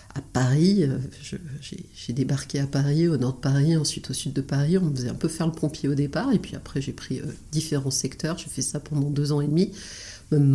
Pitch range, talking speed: 135-155 Hz, 250 wpm